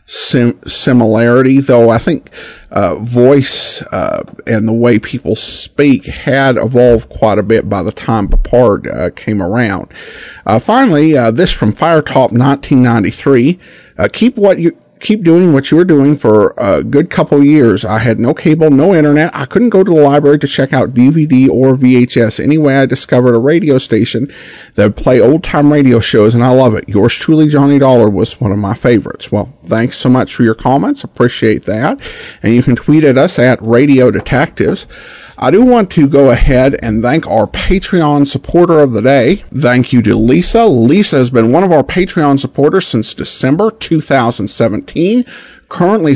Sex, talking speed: male, 180 wpm